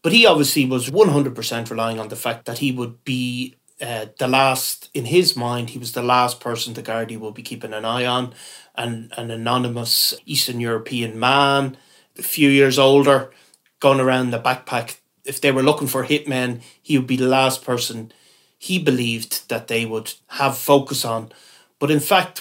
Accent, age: Irish, 30-49